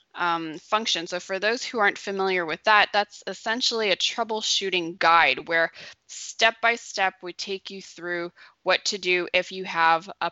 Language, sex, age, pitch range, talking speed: English, female, 20-39, 170-200 Hz, 170 wpm